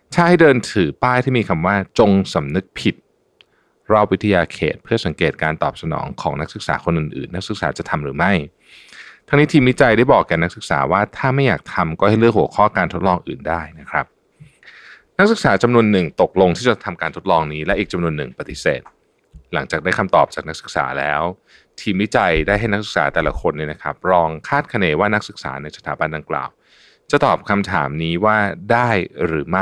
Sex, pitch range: male, 85-140 Hz